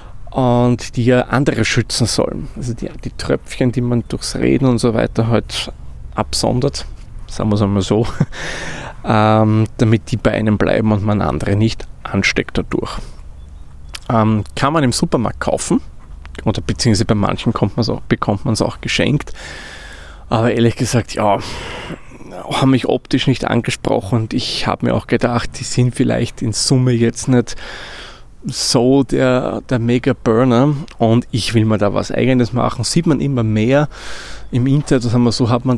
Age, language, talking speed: 20-39, German, 160 wpm